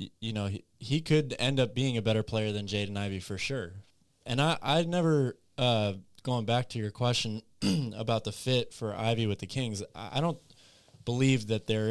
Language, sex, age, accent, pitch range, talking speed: English, male, 20-39, American, 105-125 Hz, 200 wpm